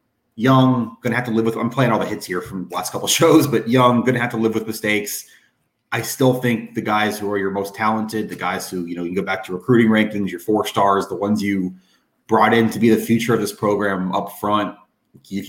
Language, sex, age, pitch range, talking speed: English, male, 30-49, 100-120 Hz, 265 wpm